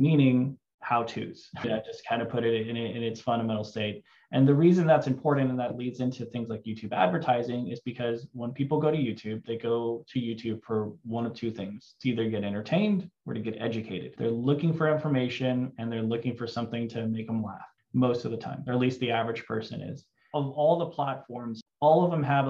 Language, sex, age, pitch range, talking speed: English, male, 20-39, 115-135 Hz, 220 wpm